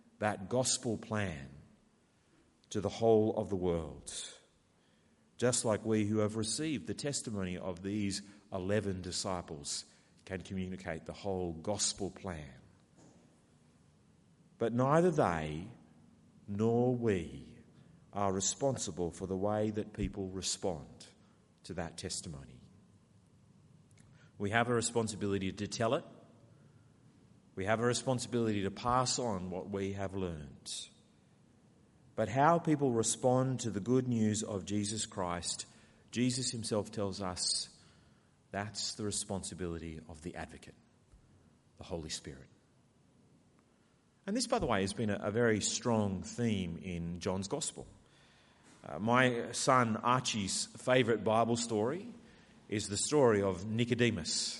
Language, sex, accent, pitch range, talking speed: English, male, Australian, 95-115 Hz, 125 wpm